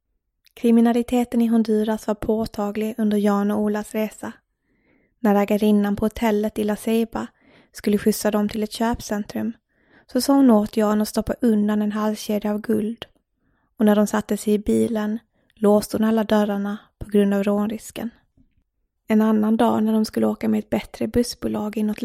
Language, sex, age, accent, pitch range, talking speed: English, female, 20-39, Swedish, 210-225 Hz, 165 wpm